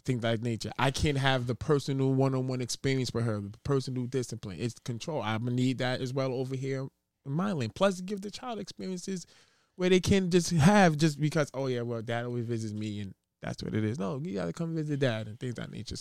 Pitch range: 110-150 Hz